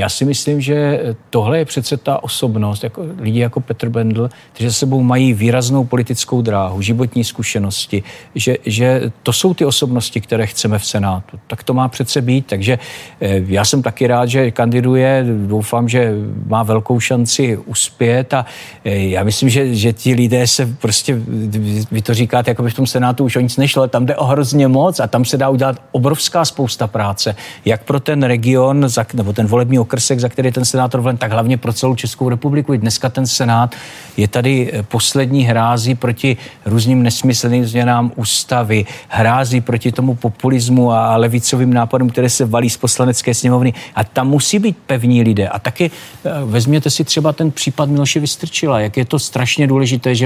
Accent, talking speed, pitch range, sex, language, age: native, 180 wpm, 115-135 Hz, male, Czech, 50-69